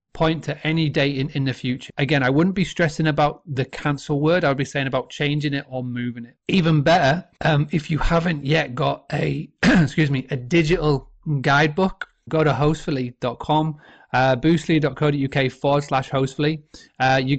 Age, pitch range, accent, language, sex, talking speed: 30-49, 135-155 Hz, British, English, male, 175 wpm